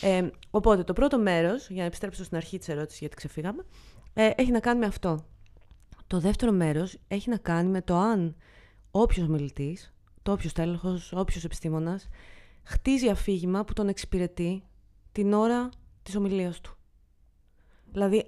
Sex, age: female, 20-39